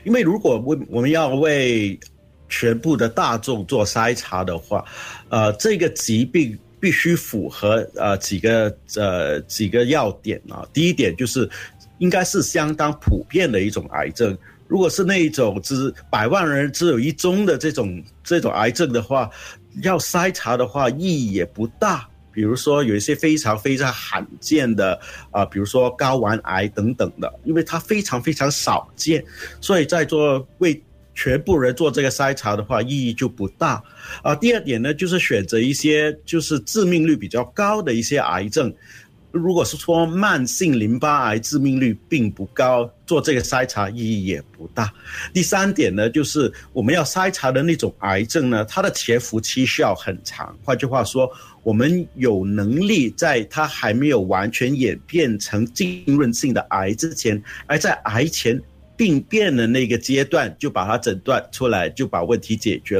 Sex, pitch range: male, 110-155 Hz